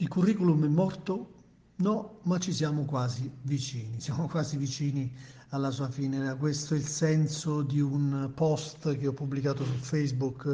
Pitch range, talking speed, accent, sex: 130-155 Hz, 160 wpm, native, male